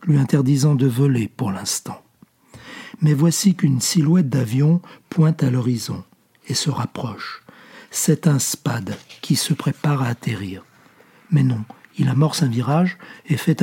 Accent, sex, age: French, male, 60-79